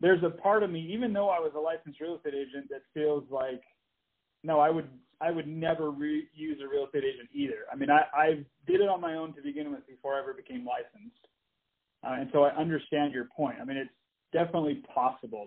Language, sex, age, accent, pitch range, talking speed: English, male, 40-59, American, 140-180 Hz, 230 wpm